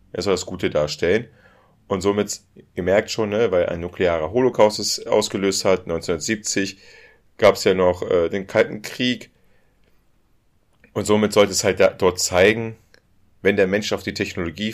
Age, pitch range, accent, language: 40-59, 95-110 Hz, German, German